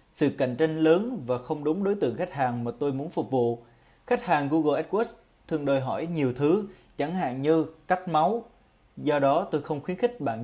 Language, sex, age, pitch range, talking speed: Vietnamese, male, 20-39, 135-180 Hz, 215 wpm